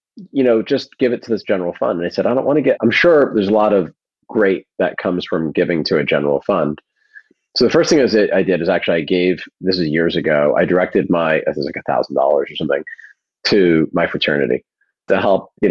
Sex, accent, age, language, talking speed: male, American, 40-59, English, 250 wpm